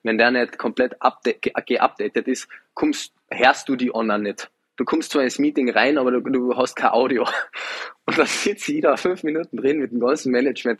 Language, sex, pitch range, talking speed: German, male, 110-130 Hz, 210 wpm